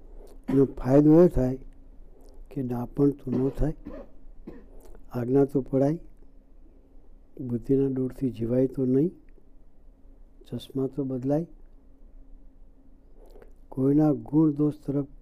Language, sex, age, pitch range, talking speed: Gujarati, male, 60-79, 110-140 Hz, 85 wpm